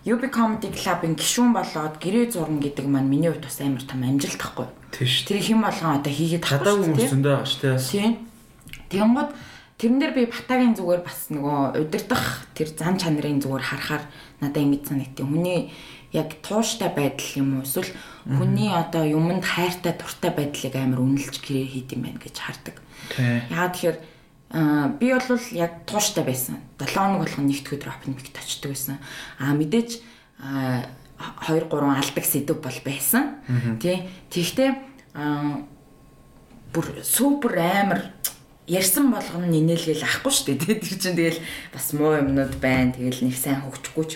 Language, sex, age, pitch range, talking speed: English, female, 20-39, 135-185 Hz, 95 wpm